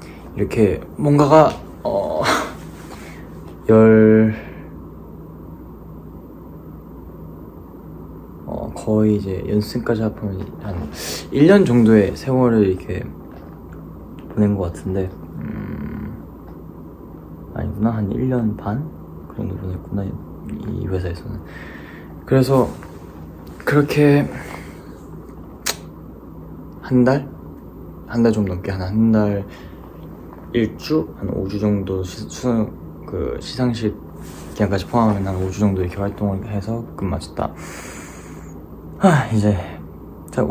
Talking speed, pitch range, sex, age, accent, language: 85 wpm, 80-105 Hz, male, 20-39, Korean, English